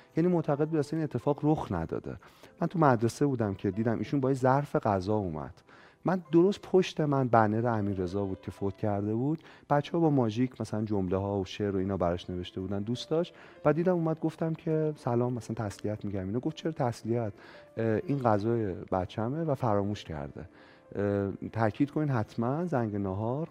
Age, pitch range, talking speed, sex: 30-49, 100-140 Hz, 180 wpm, male